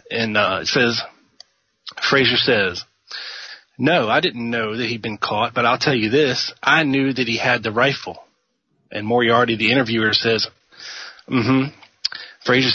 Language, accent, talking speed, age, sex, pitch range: English, American, 160 wpm, 30-49, male, 110-135 Hz